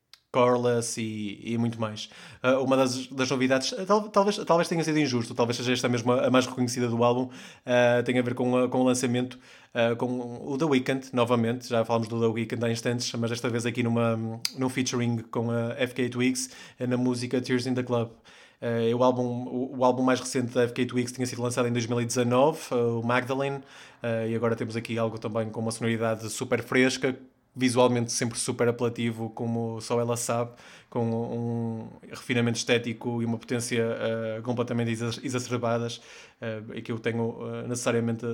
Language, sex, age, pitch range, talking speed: Portuguese, male, 20-39, 115-125 Hz, 170 wpm